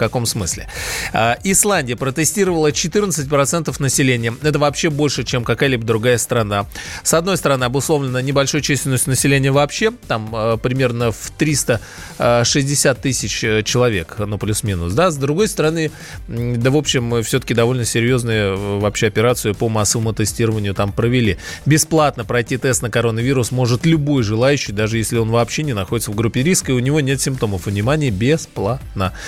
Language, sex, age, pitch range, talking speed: Russian, male, 20-39, 115-145 Hz, 145 wpm